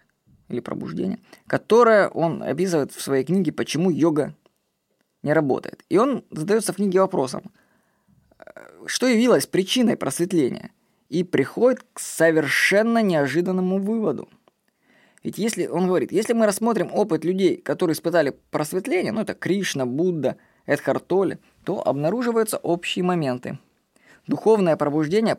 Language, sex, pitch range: Russian, female, 155-195 Hz